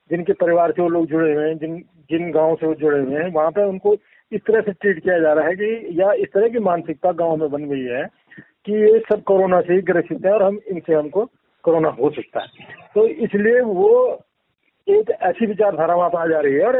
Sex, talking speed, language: male, 240 wpm, Hindi